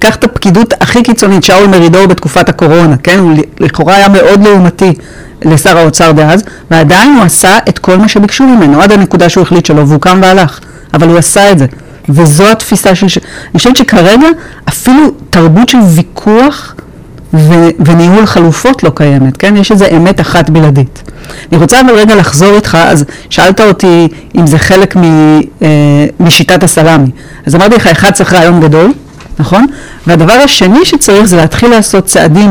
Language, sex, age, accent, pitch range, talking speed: Hebrew, female, 40-59, native, 160-200 Hz, 165 wpm